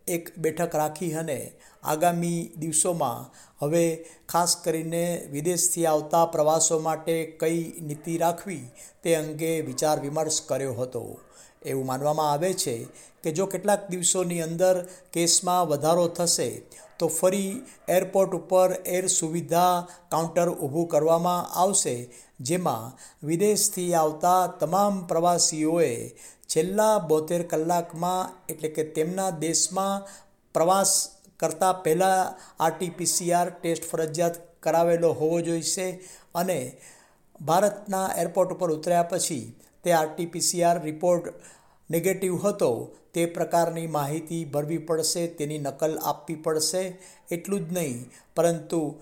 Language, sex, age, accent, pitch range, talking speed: Gujarati, male, 60-79, native, 155-180 Hz, 105 wpm